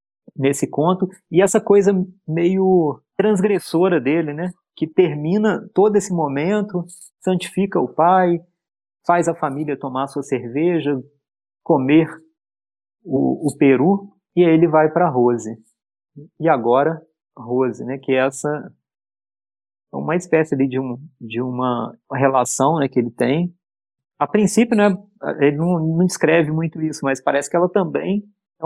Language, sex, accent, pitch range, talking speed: Portuguese, male, Brazilian, 130-175 Hz, 140 wpm